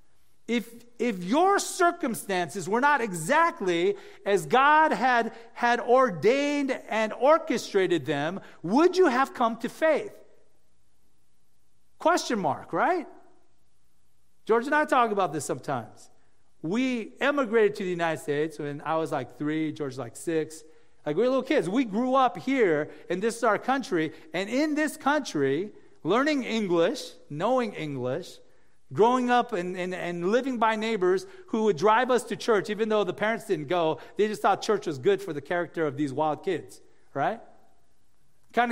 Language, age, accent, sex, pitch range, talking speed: English, 50-69, American, male, 175-255 Hz, 160 wpm